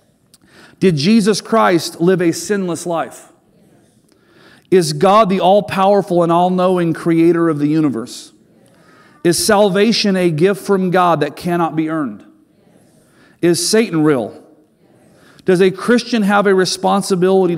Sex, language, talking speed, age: male, English, 125 wpm, 40-59